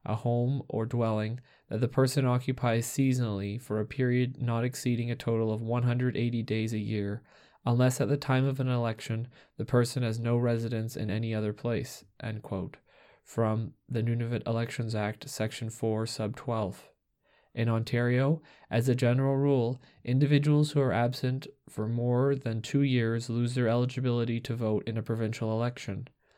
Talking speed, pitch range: 165 wpm, 110-130 Hz